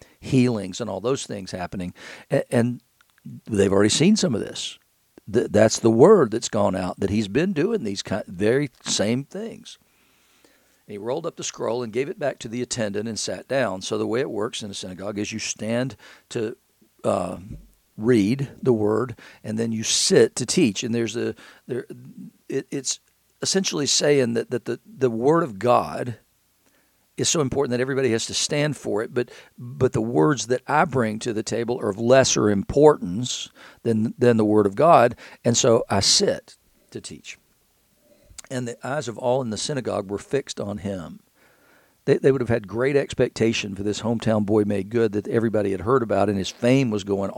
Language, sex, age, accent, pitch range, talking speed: English, male, 50-69, American, 105-130 Hz, 190 wpm